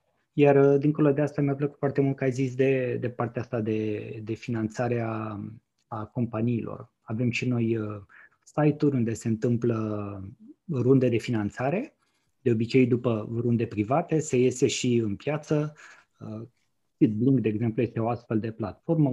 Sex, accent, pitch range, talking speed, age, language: male, native, 115-140 Hz, 160 wpm, 20-39, Romanian